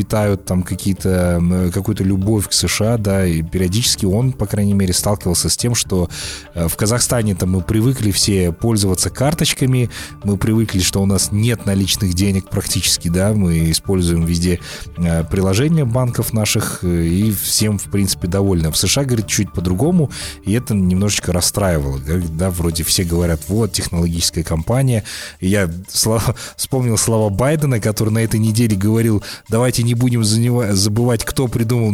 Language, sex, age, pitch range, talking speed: Russian, male, 30-49, 90-115 Hz, 150 wpm